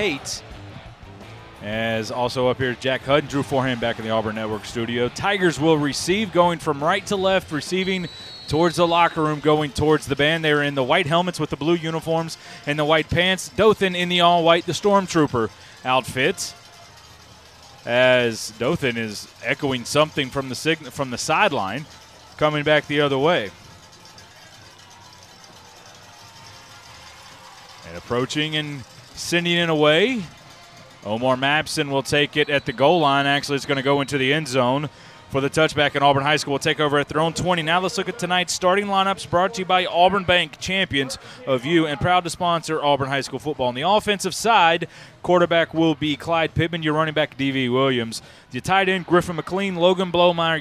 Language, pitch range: English, 130-170 Hz